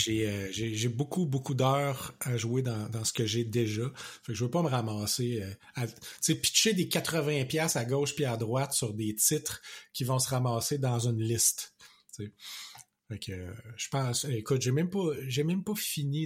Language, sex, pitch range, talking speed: French, male, 115-145 Hz, 205 wpm